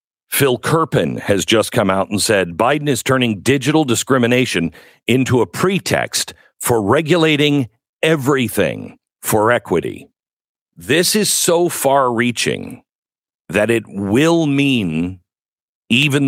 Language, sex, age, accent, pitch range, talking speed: English, male, 50-69, American, 100-135 Hz, 115 wpm